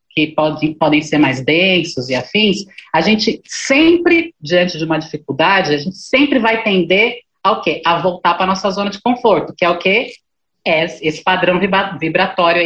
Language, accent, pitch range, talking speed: Portuguese, Brazilian, 165-230 Hz, 175 wpm